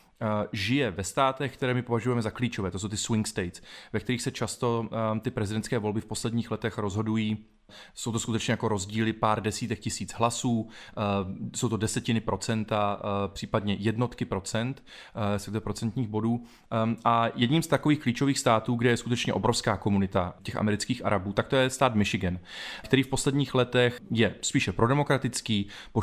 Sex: male